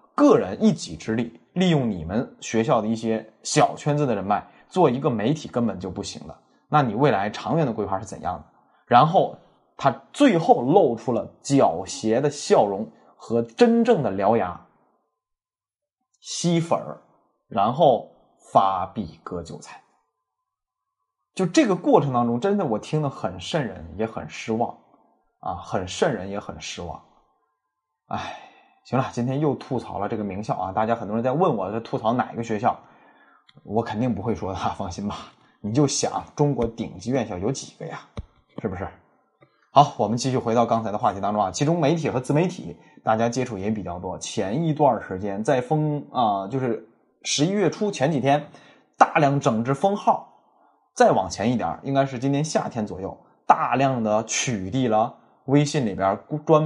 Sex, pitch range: male, 110-150 Hz